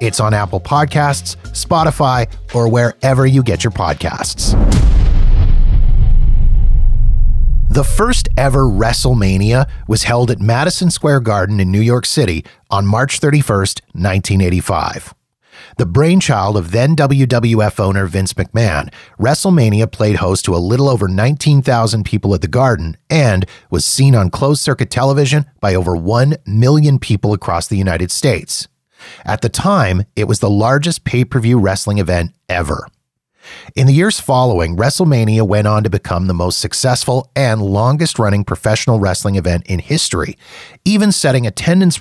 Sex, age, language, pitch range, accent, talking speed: male, 30-49, English, 100-135 Hz, American, 140 wpm